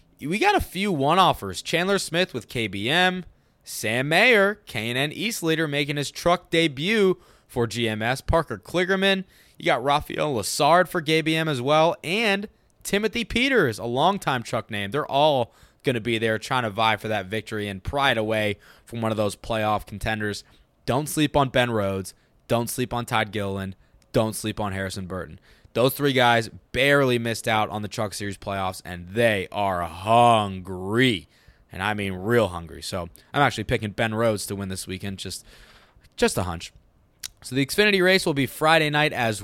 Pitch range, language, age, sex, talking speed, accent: 105-145 Hz, English, 20-39, male, 175 wpm, American